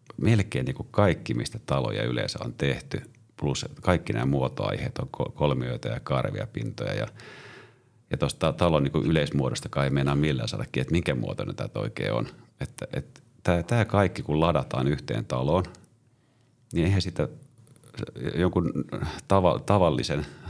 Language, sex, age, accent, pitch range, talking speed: Finnish, male, 40-59, native, 75-120 Hz, 135 wpm